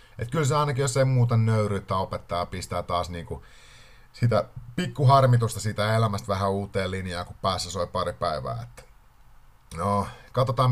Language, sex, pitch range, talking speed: Finnish, male, 95-125 Hz, 155 wpm